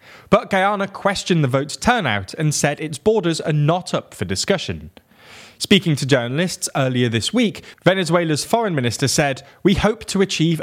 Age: 20-39